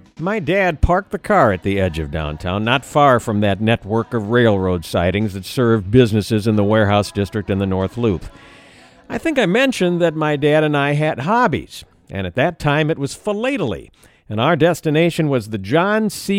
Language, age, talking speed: English, 50-69, 200 wpm